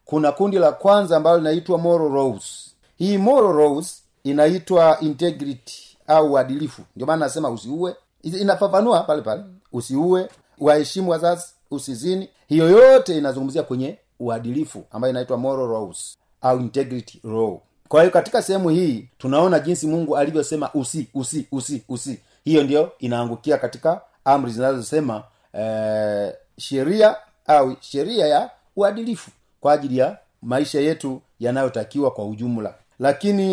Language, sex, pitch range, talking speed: Swahili, male, 125-165 Hz, 130 wpm